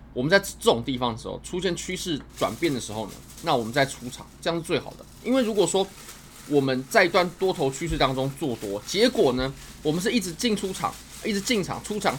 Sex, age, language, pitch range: male, 20-39, Chinese, 125-185 Hz